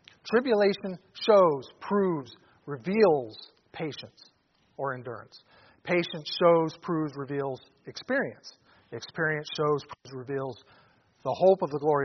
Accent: American